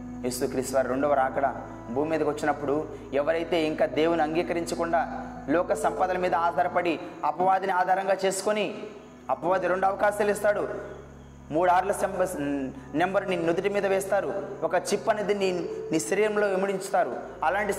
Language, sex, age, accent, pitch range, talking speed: Telugu, male, 20-39, native, 180-235 Hz, 130 wpm